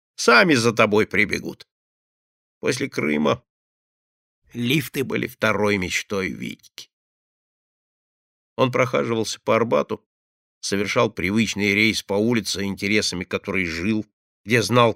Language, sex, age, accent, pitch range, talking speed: Russian, male, 50-69, native, 95-125 Hz, 100 wpm